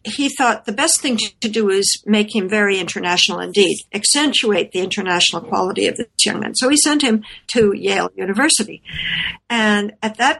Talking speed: 180 wpm